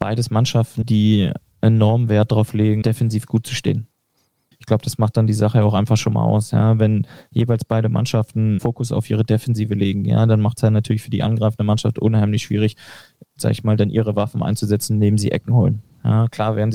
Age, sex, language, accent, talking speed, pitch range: 20-39, male, German, German, 210 wpm, 105-115 Hz